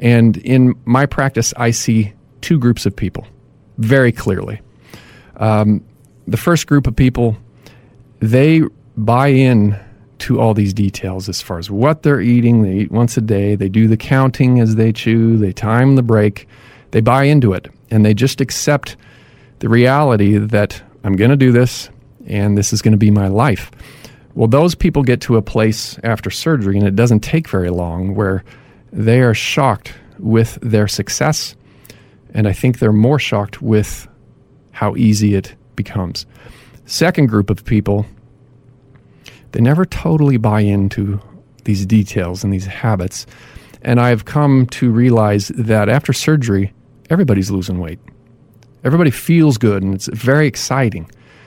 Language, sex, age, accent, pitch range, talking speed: English, male, 40-59, American, 105-130 Hz, 160 wpm